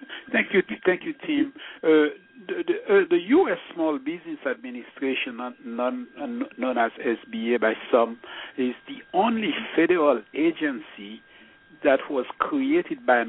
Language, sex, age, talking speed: English, male, 60-79, 140 wpm